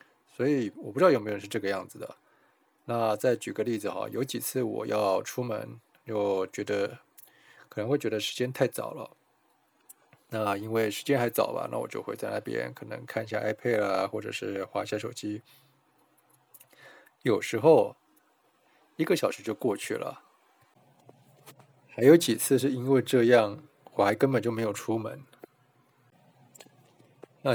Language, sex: Chinese, male